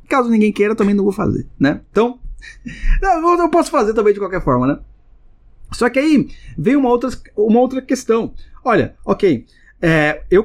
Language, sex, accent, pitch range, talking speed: Portuguese, male, Brazilian, 165-245 Hz, 160 wpm